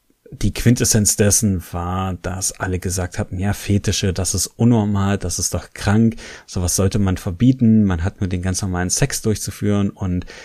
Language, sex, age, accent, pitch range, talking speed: German, male, 30-49, German, 95-115 Hz, 170 wpm